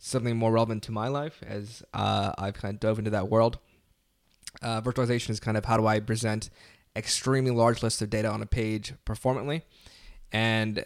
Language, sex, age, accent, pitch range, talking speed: English, male, 20-39, American, 110-125 Hz, 190 wpm